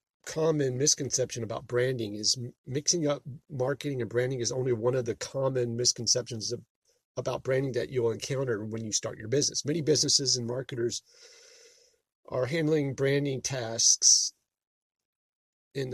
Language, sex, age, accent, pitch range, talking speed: English, male, 40-59, American, 115-140 Hz, 140 wpm